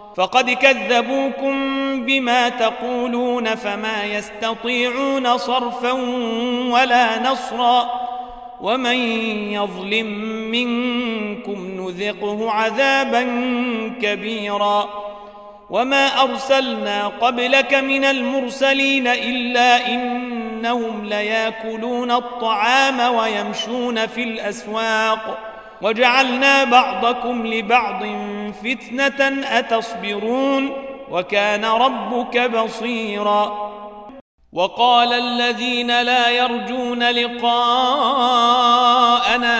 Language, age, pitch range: Arabic, 40-59, 215-245 Hz